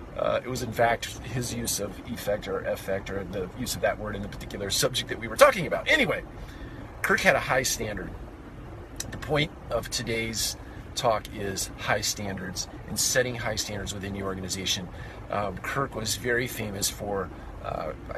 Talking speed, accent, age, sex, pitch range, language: 180 wpm, American, 40-59, male, 100-120 Hz, English